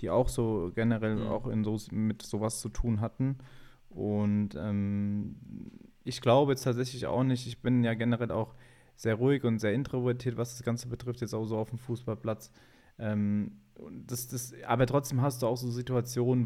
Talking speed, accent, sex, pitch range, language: 180 wpm, German, male, 110-125 Hz, German